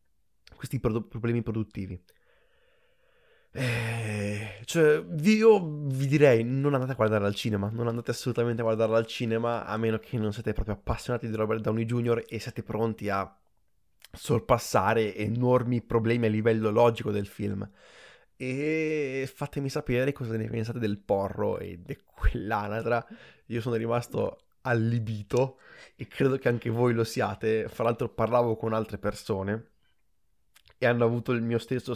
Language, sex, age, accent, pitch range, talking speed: Italian, male, 20-39, native, 110-130 Hz, 145 wpm